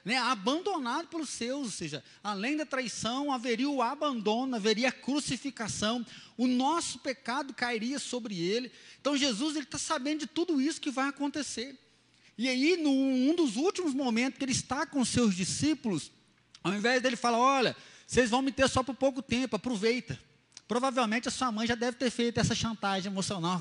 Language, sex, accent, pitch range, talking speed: Portuguese, male, Brazilian, 220-275 Hz, 175 wpm